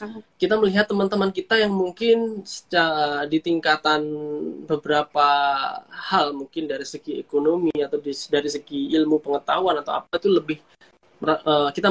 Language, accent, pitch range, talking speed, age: Indonesian, native, 150-210 Hz, 120 wpm, 20-39